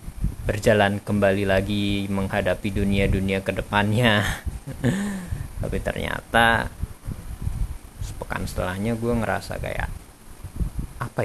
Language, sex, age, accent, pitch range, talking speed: Indonesian, male, 20-39, native, 90-105 Hz, 80 wpm